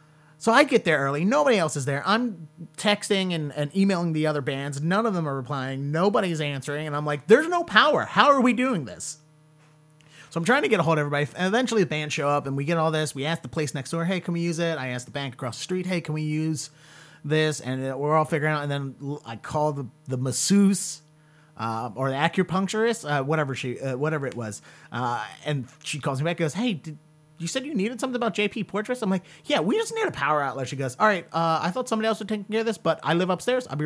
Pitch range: 135-175 Hz